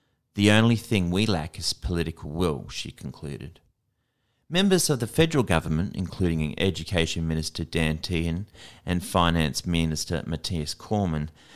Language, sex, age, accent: English, male, 30-49, Australian